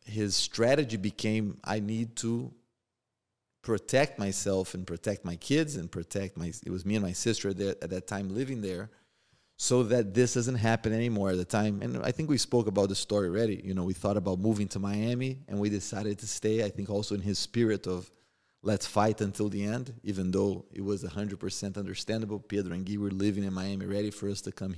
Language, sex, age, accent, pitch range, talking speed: English, male, 30-49, Brazilian, 100-115 Hz, 210 wpm